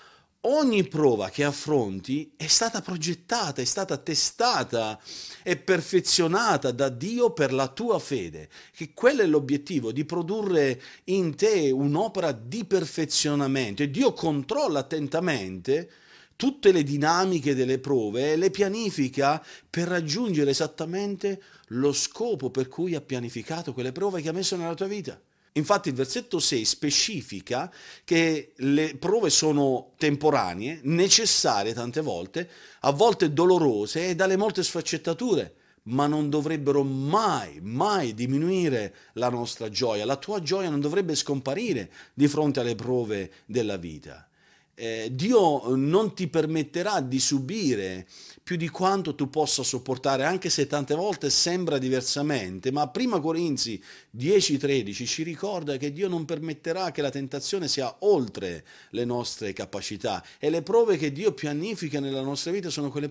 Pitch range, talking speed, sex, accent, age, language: 135-175 Hz, 140 wpm, male, native, 40-59, Italian